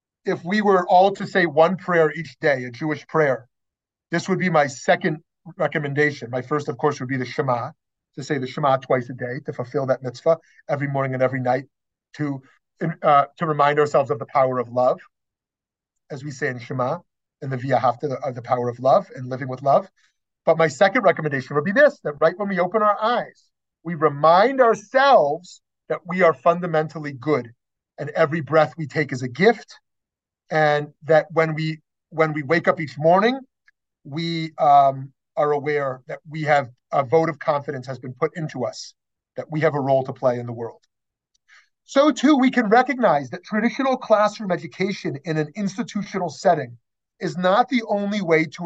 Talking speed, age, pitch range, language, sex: 195 wpm, 40-59, 135-180 Hz, English, male